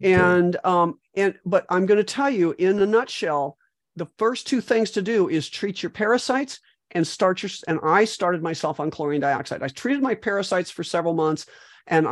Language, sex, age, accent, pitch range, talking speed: English, male, 50-69, American, 160-195 Hz, 200 wpm